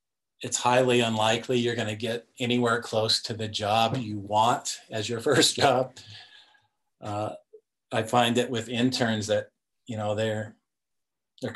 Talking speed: 150 wpm